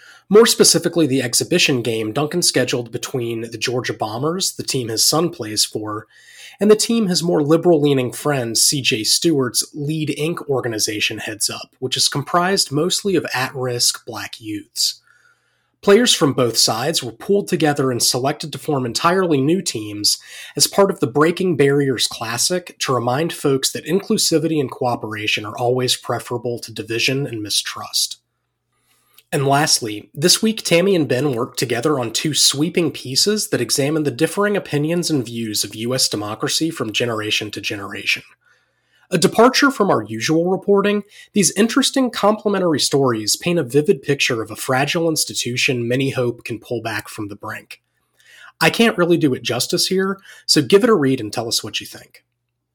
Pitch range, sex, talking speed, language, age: 120-175 Hz, male, 165 wpm, English, 30-49